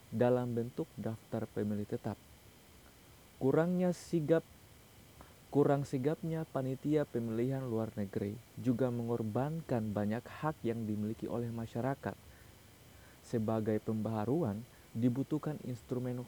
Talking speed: 90 wpm